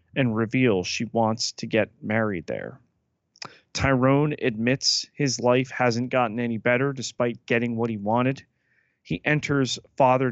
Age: 30-49